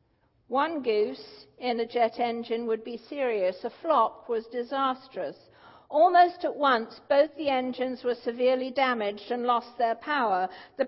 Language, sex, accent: English, female, British